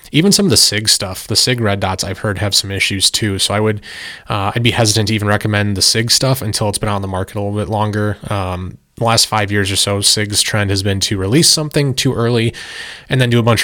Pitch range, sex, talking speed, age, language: 100-120 Hz, male, 265 wpm, 20-39, English